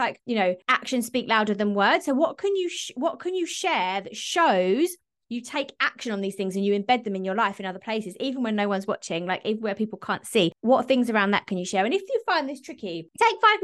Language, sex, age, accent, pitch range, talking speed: English, female, 20-39, British, 210-300 Hz, 265 wpm